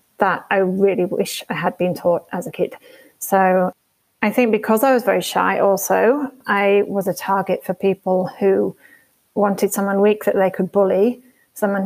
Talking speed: 175 wpm